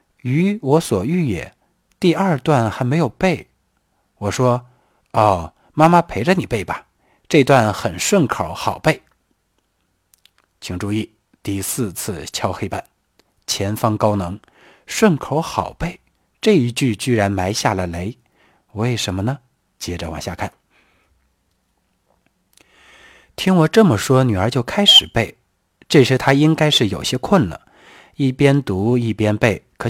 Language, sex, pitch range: Chinese, male, 105-155 Hz